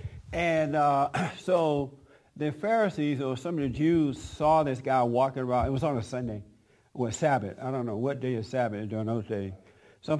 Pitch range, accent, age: 120-150 Hz, American, 60-79